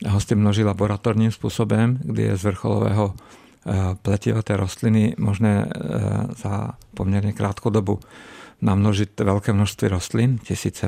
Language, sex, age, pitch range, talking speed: Czech, male, 50-69, 100-110 Hz, 115 wpm